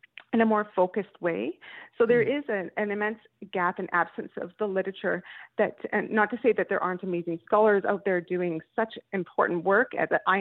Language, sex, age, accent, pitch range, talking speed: English, female, 30-49, American, 185-230 Hz, 200 wpm